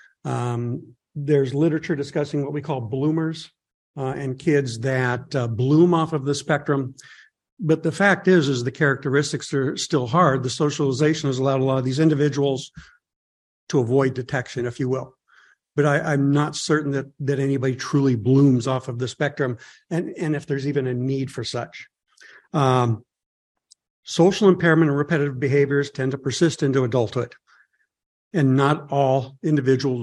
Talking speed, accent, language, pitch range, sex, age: 160 wpm, American, English, 130-155 Hz, male, 60-79